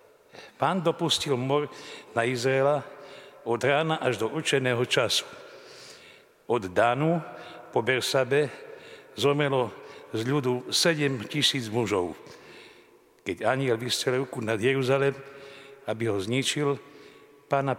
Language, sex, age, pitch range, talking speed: Slovak, male, 60-79, 125-155 Hz, 105 wpm